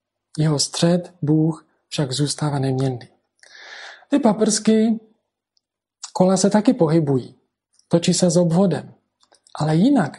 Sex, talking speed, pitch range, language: male, 105 wpm, 155-190 Hz, Czech